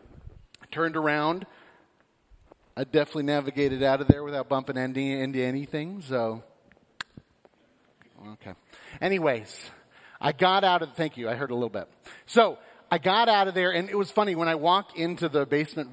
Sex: male